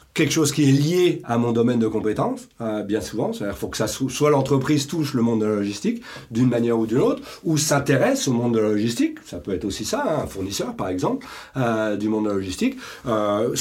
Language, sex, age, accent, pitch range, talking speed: French, male, 40-59, French, 115-150 Hz, 240 wpm